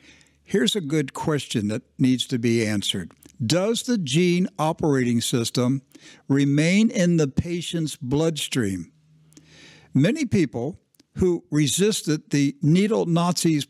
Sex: male